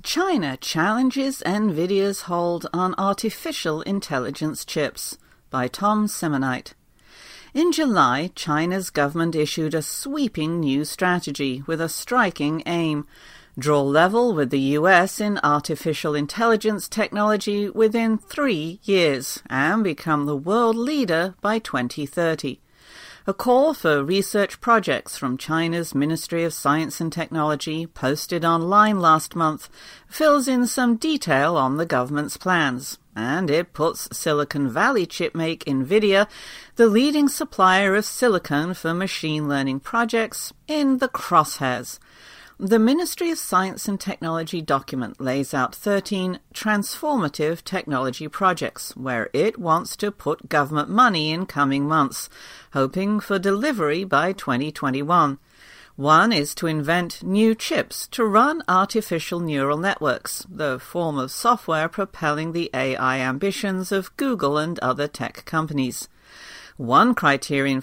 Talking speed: 125 wpm